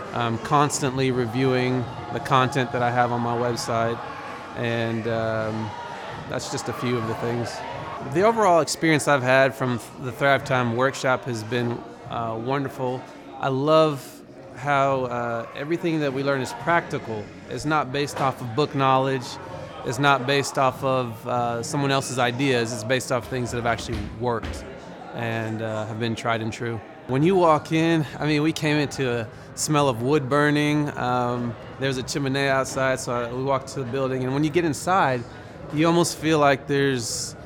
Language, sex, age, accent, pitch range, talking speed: English, male, 30-49, American, 120-140 Hz, 175 wpm